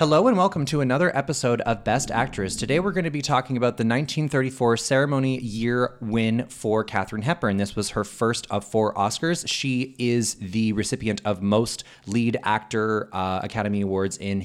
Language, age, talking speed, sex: English, 30-49, 180 wpm, male